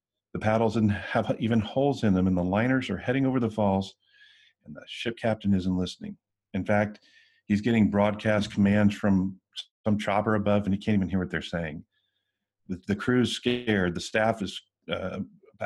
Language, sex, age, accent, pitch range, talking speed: English, male, 40-59, American, 90-110 Hz, 180 wpm